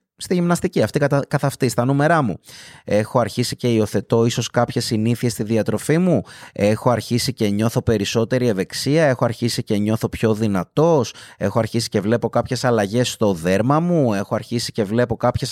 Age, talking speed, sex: 30-49, 170 wpm, male